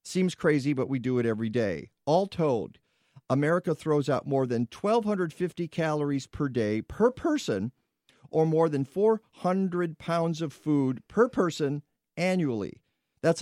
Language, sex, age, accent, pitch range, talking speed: English, male, 50-69, American, 135-200 Hz, 145 wpm